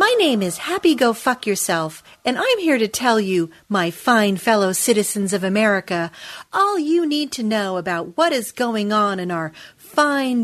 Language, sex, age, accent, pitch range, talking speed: English, female, 40-59, American, 195-305 Hz, 185 wpm